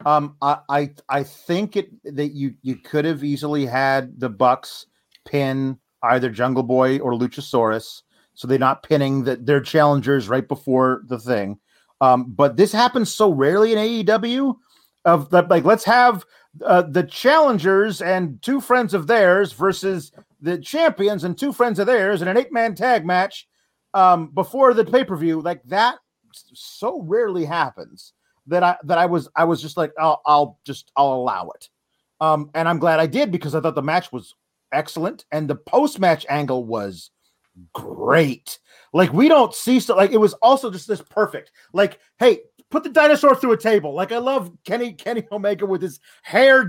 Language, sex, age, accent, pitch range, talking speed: English, male, 40-59, American, 145-230 Hz, 175 wpm